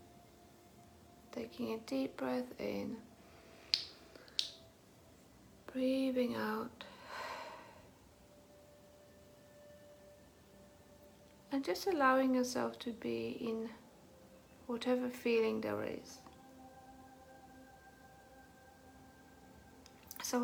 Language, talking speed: English, 55 wpm